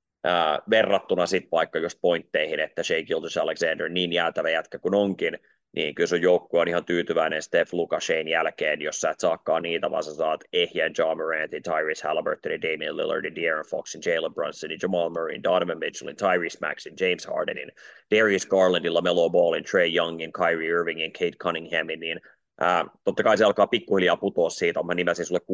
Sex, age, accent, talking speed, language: male, 30-49, native, 170 wpm, Finnish